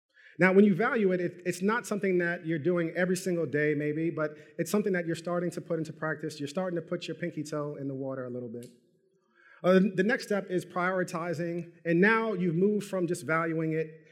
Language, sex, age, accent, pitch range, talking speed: English, male, 40-59, American, 150-180 Hz, 225 wpm